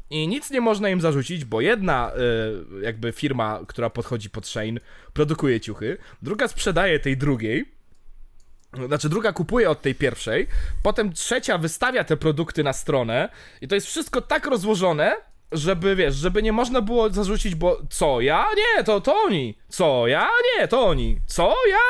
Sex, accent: male, native